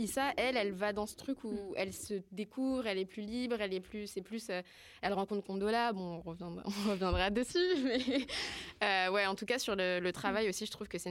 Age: 20-39